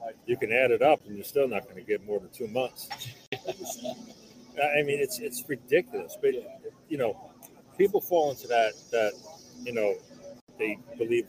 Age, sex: 40-59, male